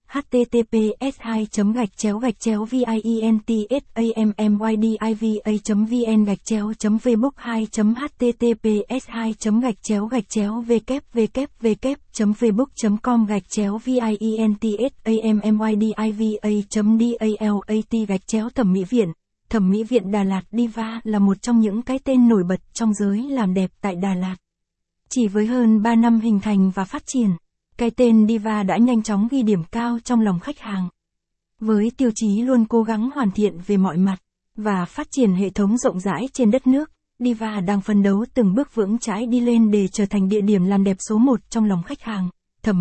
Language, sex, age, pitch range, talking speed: Vietnamese, female, 20-39, 205-235 Hz, 170 wpm